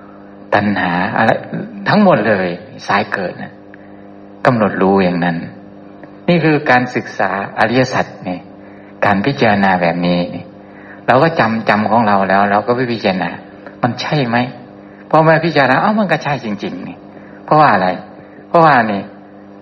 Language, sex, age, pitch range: Thai, male, 60-79, 95-110 Hz